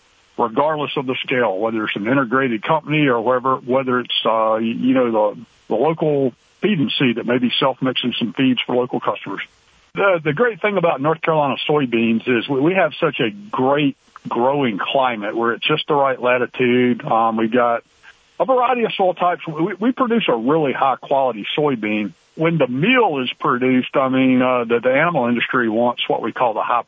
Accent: American